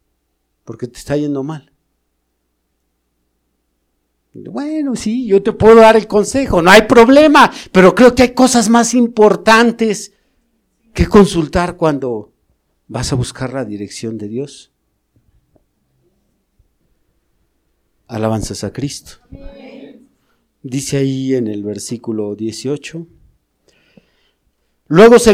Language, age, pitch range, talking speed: Spanish, 50-69, 110-185 Hz, 105 wpm